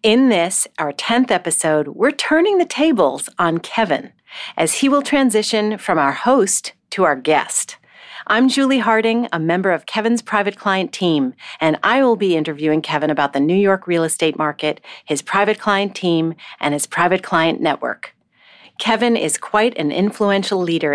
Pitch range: 165-240 Hz